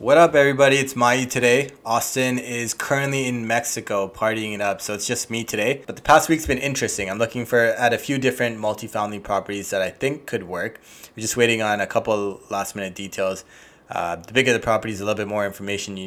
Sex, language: male, English